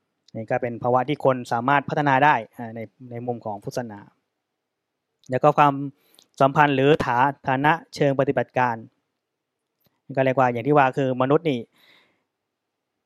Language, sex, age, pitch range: Thai, male, 20-39, 125-150 Hz